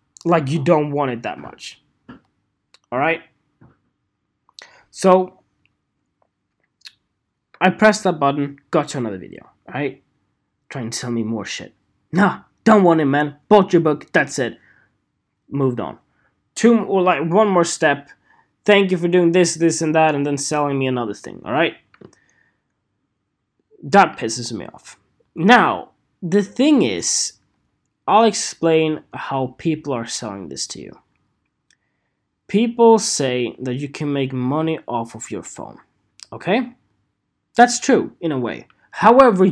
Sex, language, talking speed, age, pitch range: male, English, 140 wpm, 20-39, 130-180 Hz